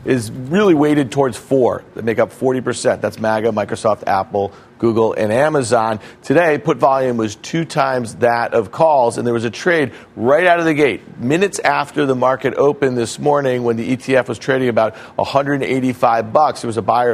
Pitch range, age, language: 120-145 Hz, 40-59, English